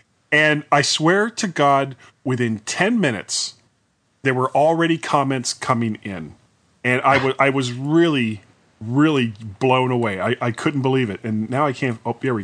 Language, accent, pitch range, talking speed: English, American, 115-150 Hz, 170 wpm